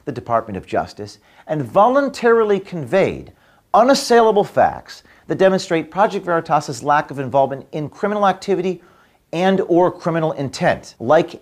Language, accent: English, American